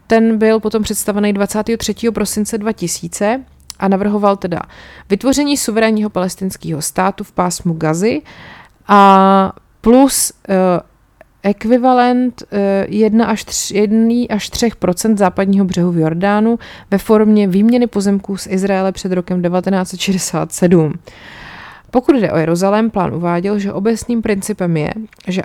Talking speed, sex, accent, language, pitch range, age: 110 wpm, female, native, Czech, 180-220 Hz, 30-49